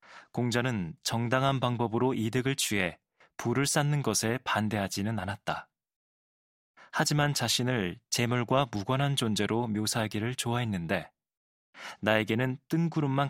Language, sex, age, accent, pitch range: Korean, male, 20-39, native, 105-135 Hz